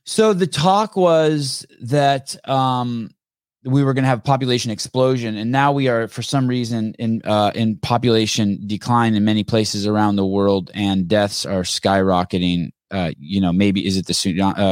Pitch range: 100-125 Hz